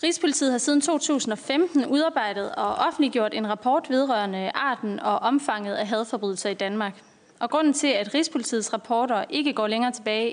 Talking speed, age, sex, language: 155 wpm, 20-39, female, Danish